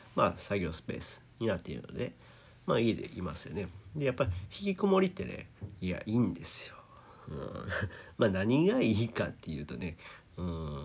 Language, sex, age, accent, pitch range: Japanese, male, 40-59, native, 90-130 Hz